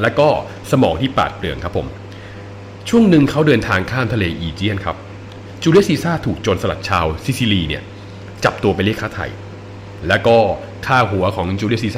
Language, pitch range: Thai, 95-115 Hz